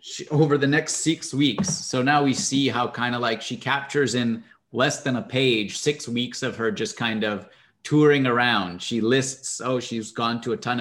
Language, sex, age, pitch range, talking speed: English, male, 30-49, 115-140 Hz, 205 wpm